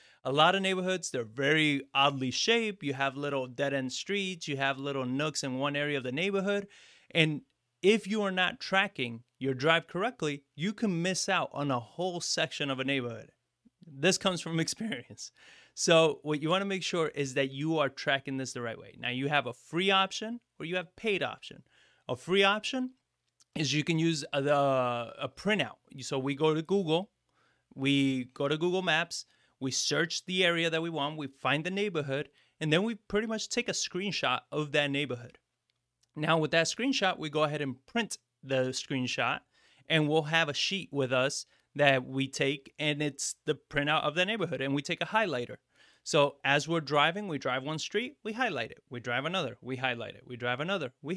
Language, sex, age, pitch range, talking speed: English, male, 30-49, 135-185 Hz, 200 wpm